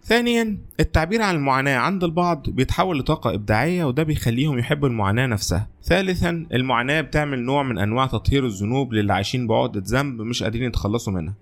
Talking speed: 160 wpm